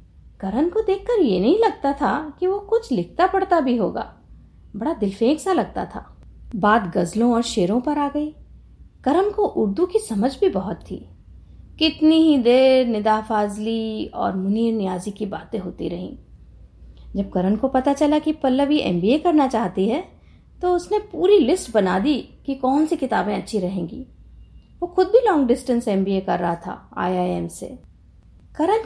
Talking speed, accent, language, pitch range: 170 wpm, native, Hindi, 220-345 Hz